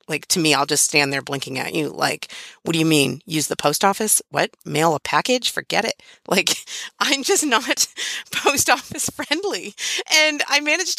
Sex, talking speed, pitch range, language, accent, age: female, 190 wpm, 175-285 Hz, English, American, 40-59